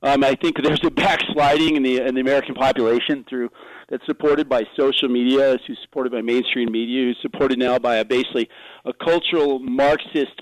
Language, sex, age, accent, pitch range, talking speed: English, male, 40-59, American, 135-170 Hz, 185 wpm